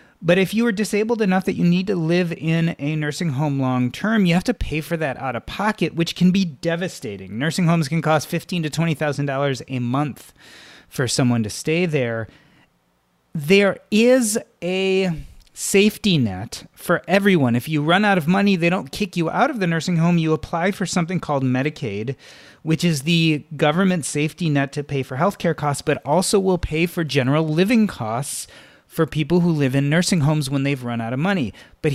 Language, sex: English, male